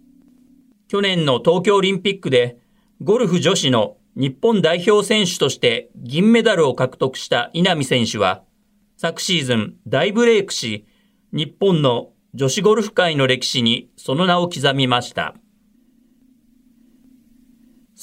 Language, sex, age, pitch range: Japanese, male, 40-59, 135-220 Hz